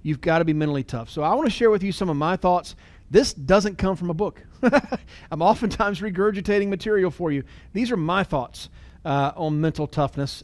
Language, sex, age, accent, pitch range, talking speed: English, male, 40-59, American, 145-210 Hz, 215 wpm